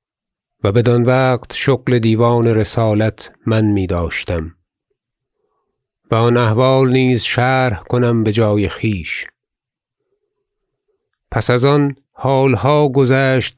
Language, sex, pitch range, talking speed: Persian, male, 105-125 Hz, 100 wpm